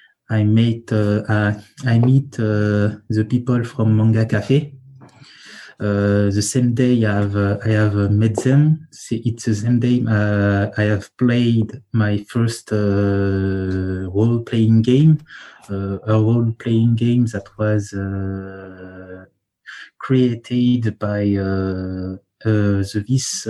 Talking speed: 130 wpm